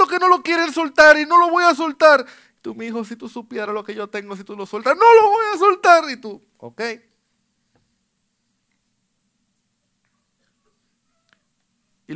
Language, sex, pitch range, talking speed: Spanish, male, 150-230 Hz, 170 wpm